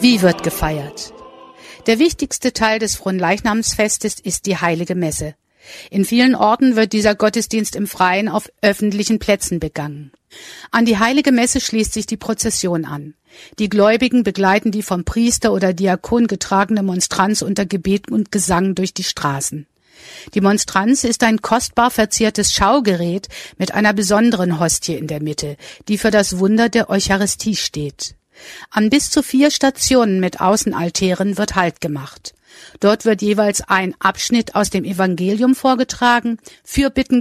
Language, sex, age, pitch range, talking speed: German, female, 50-69, 190-230 Hz, 145 wpm